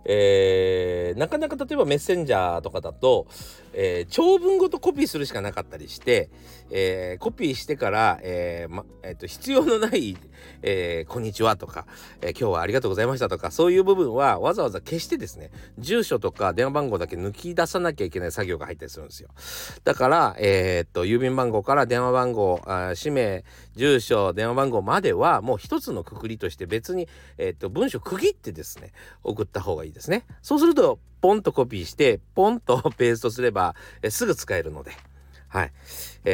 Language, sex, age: Japanese, male, 40-59